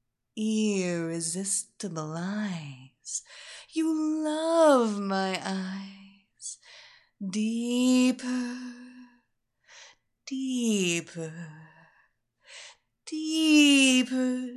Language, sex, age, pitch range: English, female, 30-49, 175-255 Hz